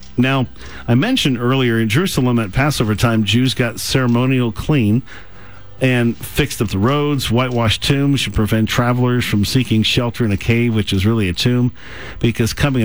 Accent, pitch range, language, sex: American, 105-125 Hz, English, male